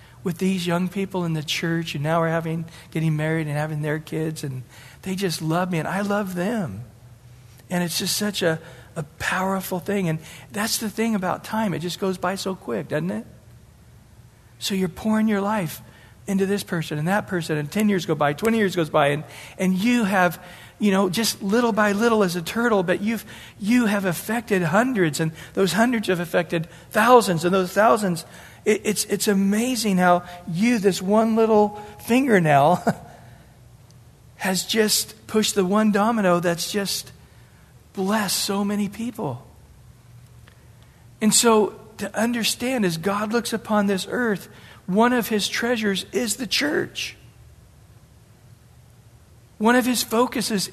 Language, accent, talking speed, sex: English, American, 165 wpm, male